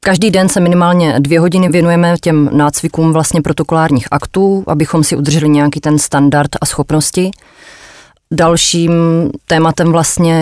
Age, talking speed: 20-39, 130 wpm